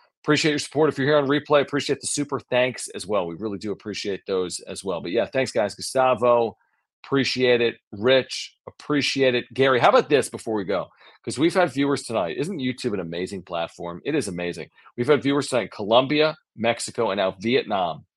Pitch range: 100-145 Hz